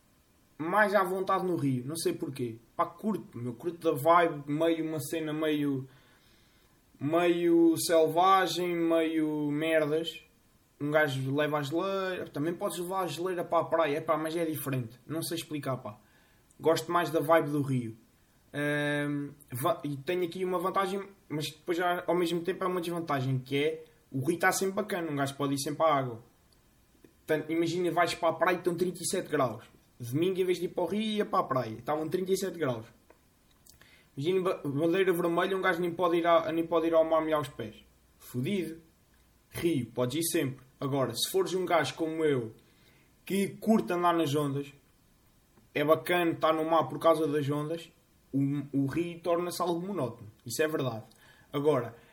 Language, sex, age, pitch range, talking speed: Portuguese, male, 20-39, 140-175 Hz, 175 wpm